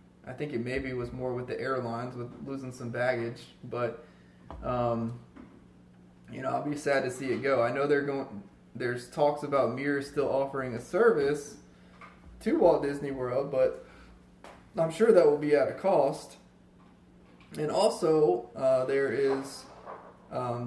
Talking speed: 160 wpm